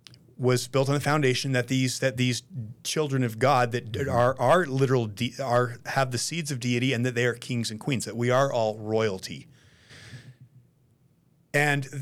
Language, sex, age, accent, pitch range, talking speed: English, male, 30-49, American, 120-140 Hz, 180 wpm